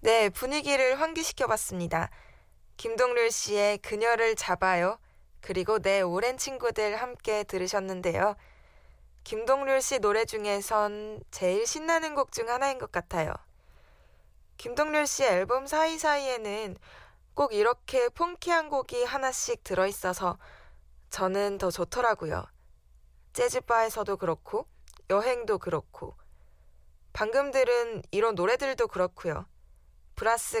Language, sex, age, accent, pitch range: Korean, female, 20-39, native, 185-275 Hz